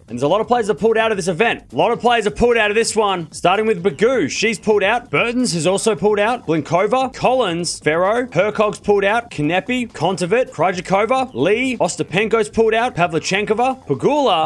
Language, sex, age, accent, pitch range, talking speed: English, male, 20-39, Australian, 185-235 Hz, 205 wpm